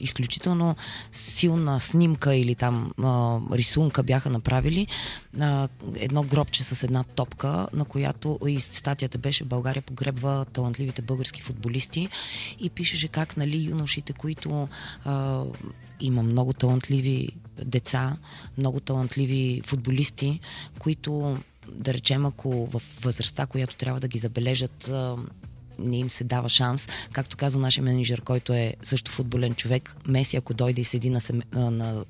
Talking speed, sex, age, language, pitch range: 135 wpm, female, 20-39, Bulgarian, 120-140 Hz